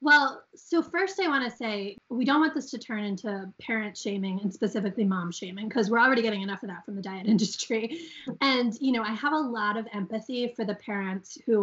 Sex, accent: female, American